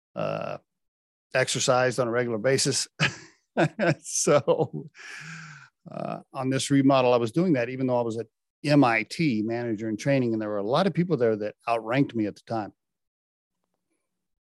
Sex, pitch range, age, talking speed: male, 115-150 Hz, 50-69, 160 wpm